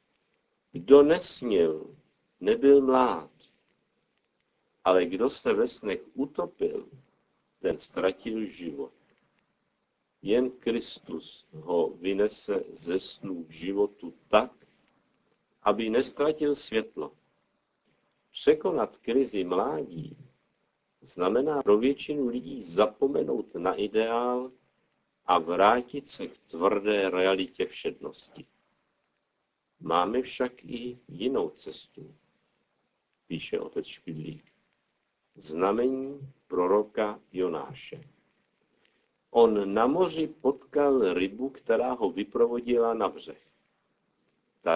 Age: 50-69